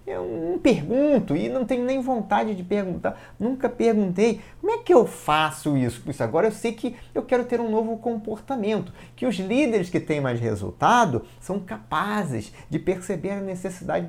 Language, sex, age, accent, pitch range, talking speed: Portuguese, male, 30-49, Brazilian, 155-225 Hz, 180 wpm